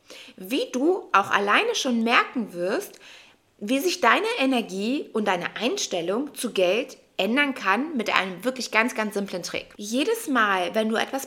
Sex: female